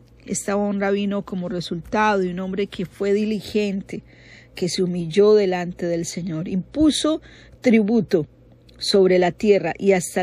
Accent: American